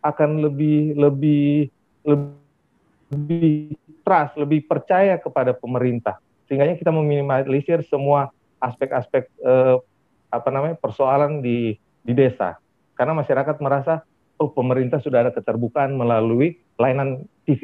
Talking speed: 110 wpm